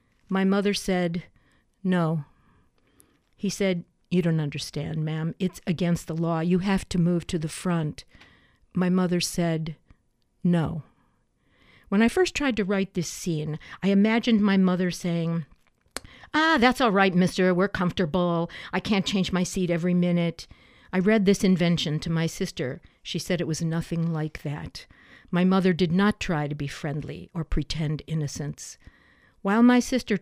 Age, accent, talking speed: 50-69, American, 160 wpm